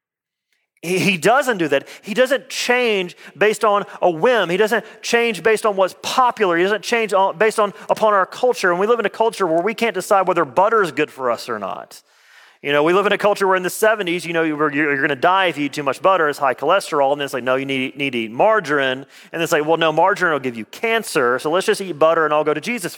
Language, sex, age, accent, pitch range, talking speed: English, male, 40-59, American, 165-225 Hz, 270 wpm